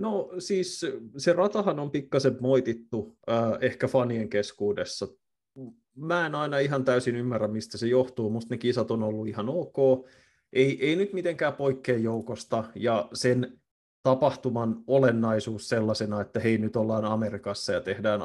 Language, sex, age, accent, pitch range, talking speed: Finnish, male, 30-49, native, 105-130 Hz, 150 wpm